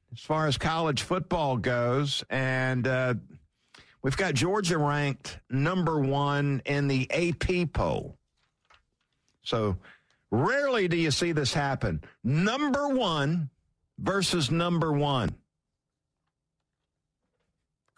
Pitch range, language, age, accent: 120-165 Hz, English, 50-69, American